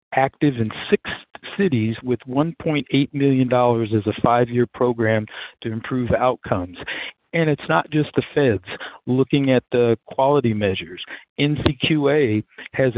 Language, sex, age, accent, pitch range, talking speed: English, male, 50-69, American, 115-140 Hz, 125 wpm